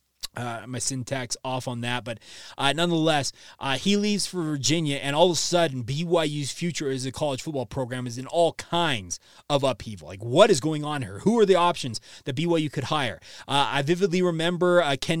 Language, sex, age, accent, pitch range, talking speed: English, male, 20-39, American, 135-165 Hz, 205 wpm